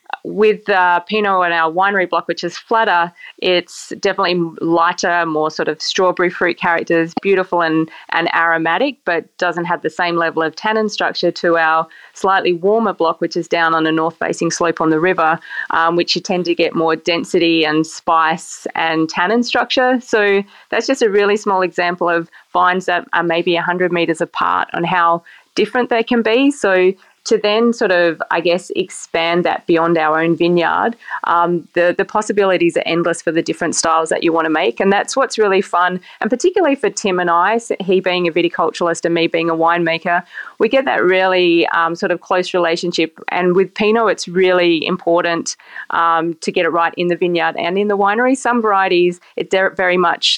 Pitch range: 170-195 Hz